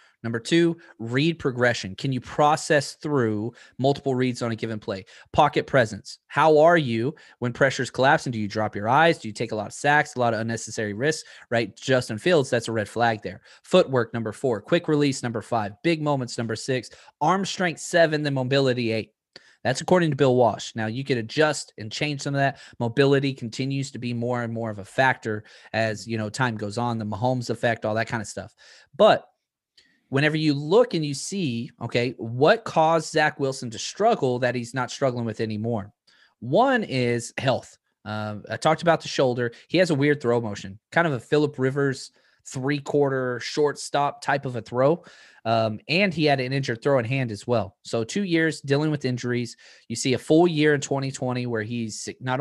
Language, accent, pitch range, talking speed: English, American, 115-145 Hz, 200 wpm